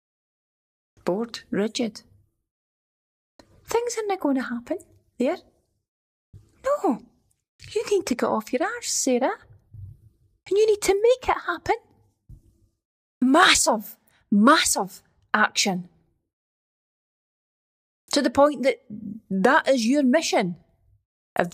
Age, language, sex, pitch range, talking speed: 30-49, English, female, 205-275 Hz, 105 wpm